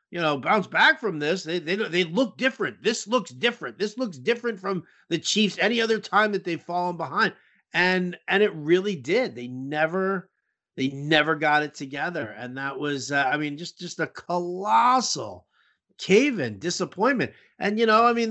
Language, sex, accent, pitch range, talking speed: English, male, American, 135-195 Hz, 185 wpm